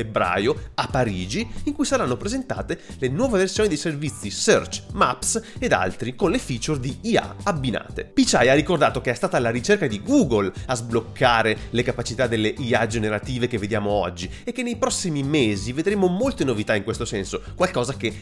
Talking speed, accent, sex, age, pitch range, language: 180 wpm, native, male, 30-49, 110-150 Hz, Italian